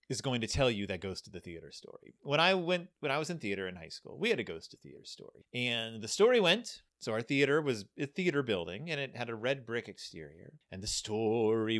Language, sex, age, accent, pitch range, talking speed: English, male, 30-49, American, 115-165 Hz, 255 wpm